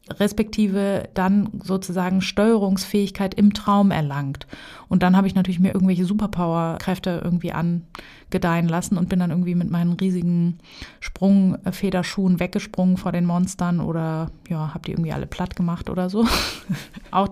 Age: 20-39